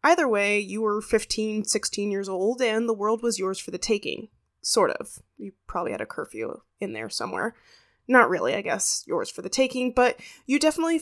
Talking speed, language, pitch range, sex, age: 200 wpm, English, 195-250 Hz, female, 20-39